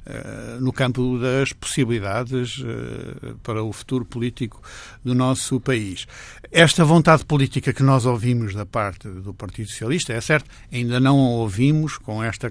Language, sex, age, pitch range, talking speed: Portuguese, male, 60-79, 110-135 Hz, 145 wpm